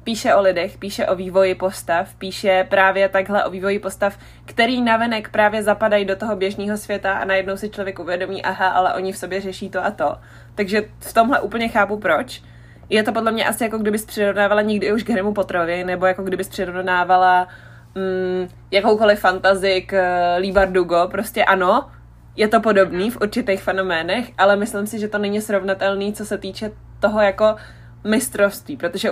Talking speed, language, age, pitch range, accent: 175 wpm, Czech, 20-39, 185-215 Hz, native